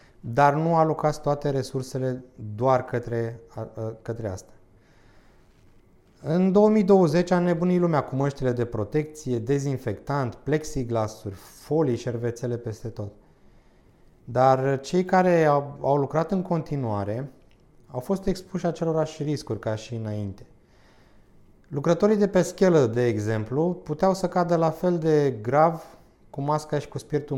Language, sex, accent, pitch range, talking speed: Romanian, male, native, 115-155 Hz, 125 wpm